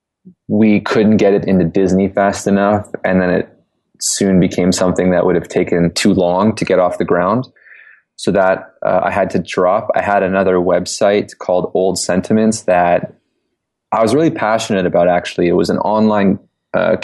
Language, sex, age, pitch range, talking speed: English, male, 20-39, 90-100 Hz, 180 wpm